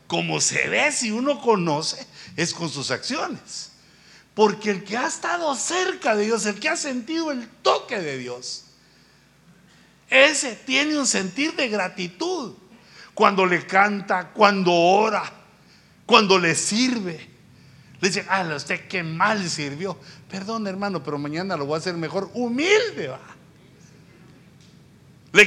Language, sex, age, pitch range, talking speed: Spanish, male, 60-79, 165-245 Hz, 140 wpm